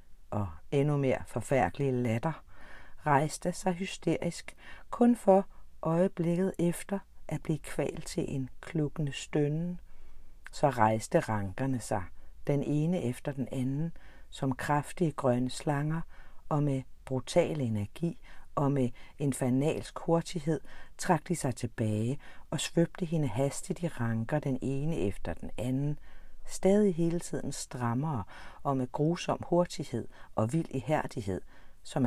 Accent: native